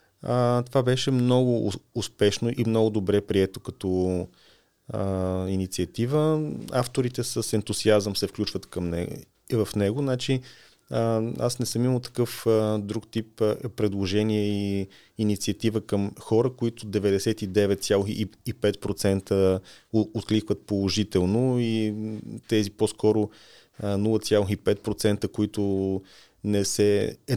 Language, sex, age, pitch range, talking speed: Bulgarian, male, 30-49, 100-120 Hz, 105 wpm